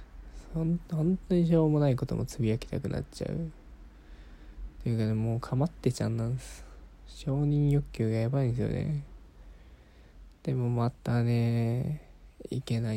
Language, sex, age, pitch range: Japanese, male, 20-39, 90-150 Hz